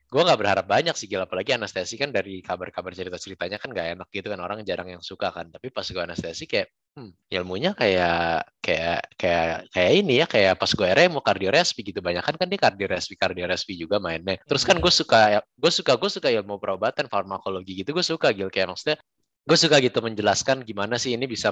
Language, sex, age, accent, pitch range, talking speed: Indonesian, male, 20-39, native, 95-130 Hz, 210 wpm